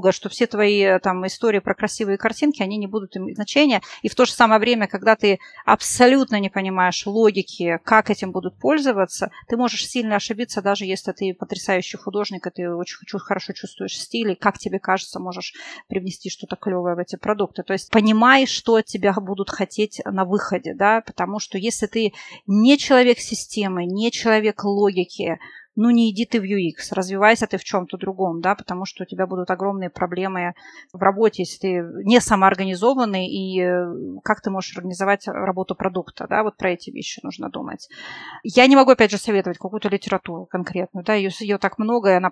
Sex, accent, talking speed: female, native, 185 wpm